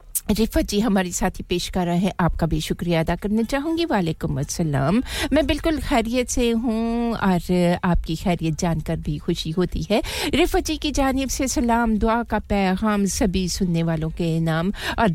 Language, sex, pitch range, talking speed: English, female, 170-220 Hz, 160 wpm